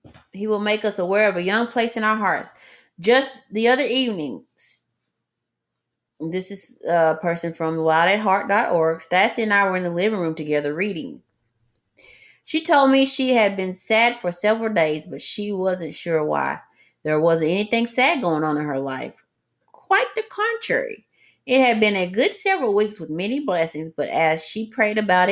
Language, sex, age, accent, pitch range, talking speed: English, female, 30-49, American, 160-225 Hz, 180 wpm